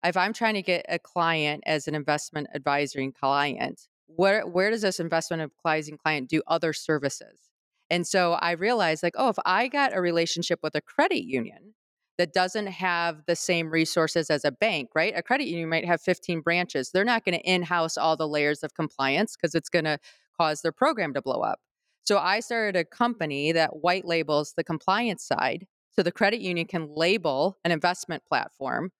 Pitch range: 160-200 Hz